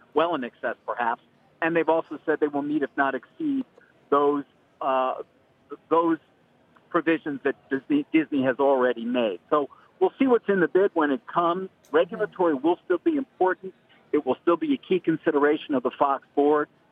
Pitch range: 135-175 Hz